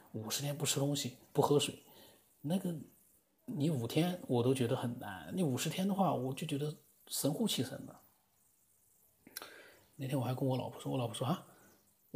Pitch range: 120-145 Hz